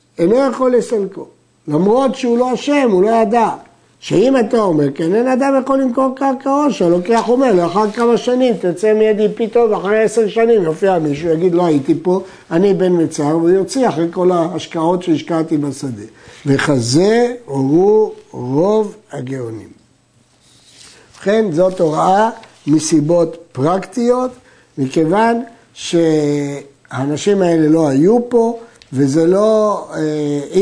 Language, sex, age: Hebrew, male, 60-79